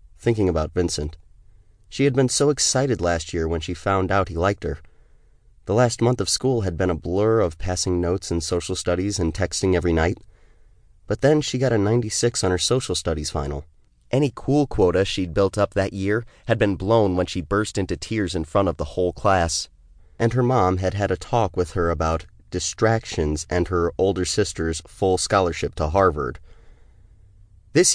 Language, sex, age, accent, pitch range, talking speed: English, male, 30-49, American, 85-105 Hz, 190 wpm